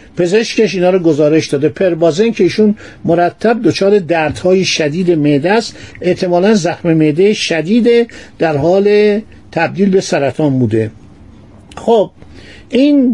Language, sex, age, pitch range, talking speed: Persian, male, 60-79, 155-215 Hz, 125 wpm